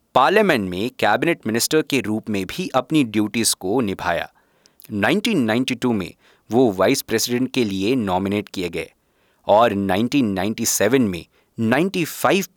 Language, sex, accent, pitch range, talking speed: Hindi, male, native, 105-135 Hz, 125 wpm